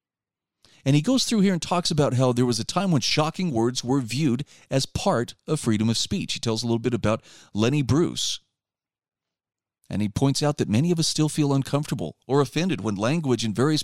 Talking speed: 210 wpm